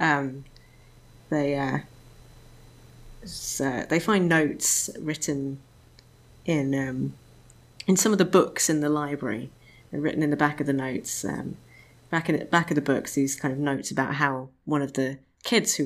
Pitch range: 130-150 Hz